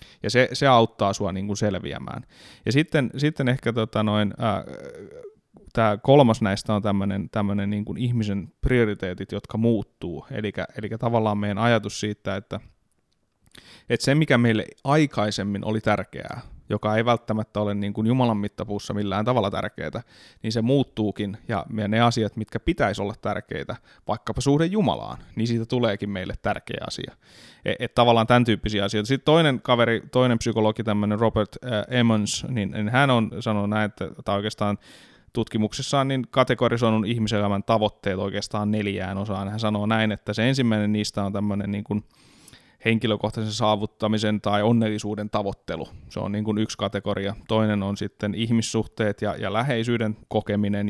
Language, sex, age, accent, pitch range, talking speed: Finnish, male, 30-49, native, 100-115 Hz, 140 wpm